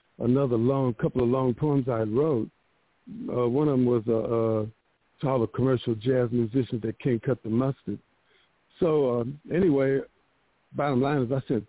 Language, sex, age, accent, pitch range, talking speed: English, male, 50-69, American, 120-140 Hz, 170 wpm